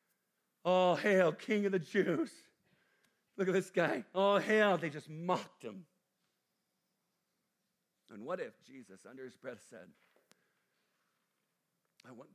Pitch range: 145-200 Hz